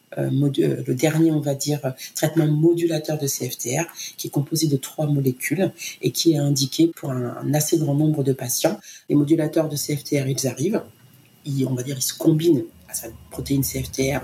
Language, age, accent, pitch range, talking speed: French, 40-59, French, 135-165 Hz, 180 wpm